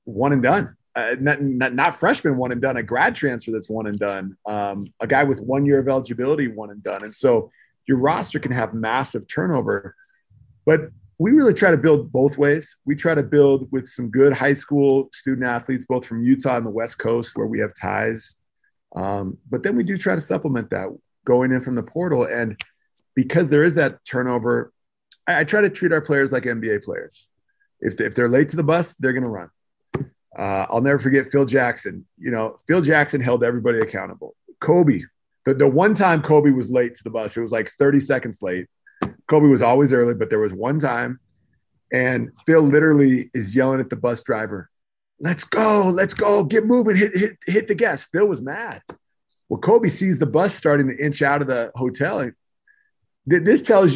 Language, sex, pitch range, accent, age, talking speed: English, male, 120-160 Hz, American, 30-49, 205 wpm